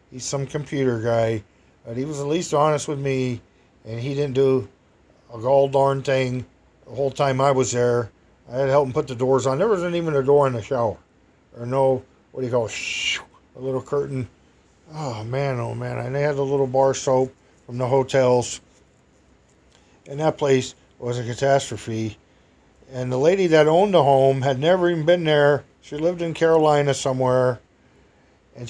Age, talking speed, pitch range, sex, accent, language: 50-69, 190 wpm, 125-160 Hz, male, American, English